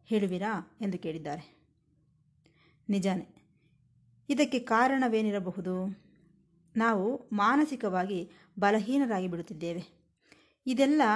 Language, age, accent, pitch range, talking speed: Kannada, 20-39, native, 180-235 Hz, 60 wpm